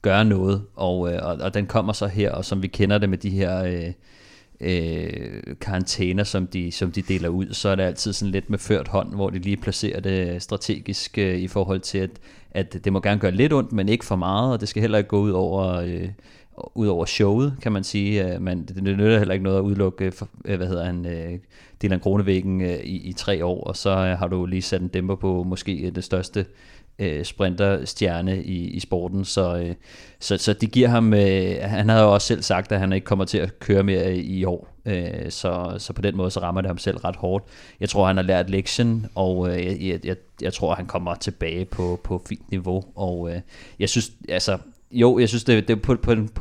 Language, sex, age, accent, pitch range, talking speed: Danish, male, 30-49, native, 90-100 Hz, 230 wpm